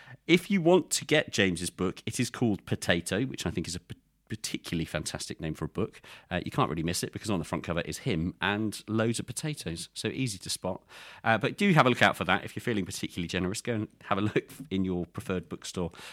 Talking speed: 250 wpm